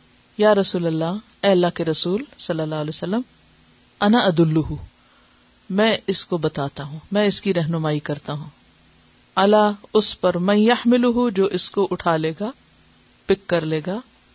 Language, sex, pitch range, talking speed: Urdu, female, 165-225 Hz, 115 wpm